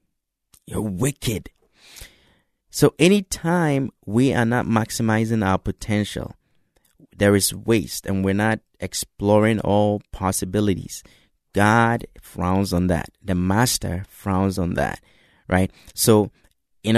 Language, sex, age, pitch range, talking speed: English, male, 30-49, 100-120 Hz, 110 wpm